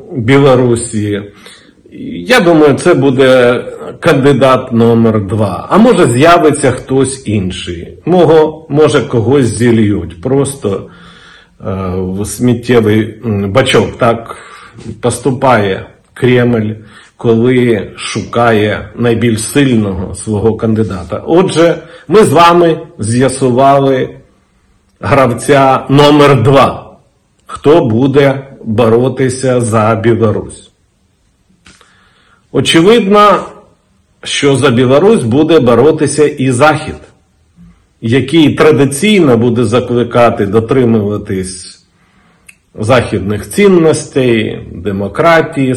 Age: 50-69